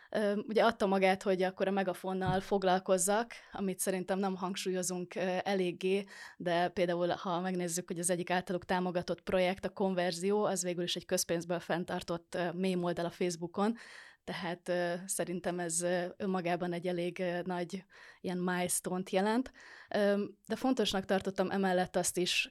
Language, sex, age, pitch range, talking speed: Hungarian, female, 20-39, 180-195 Hz, 135 wpm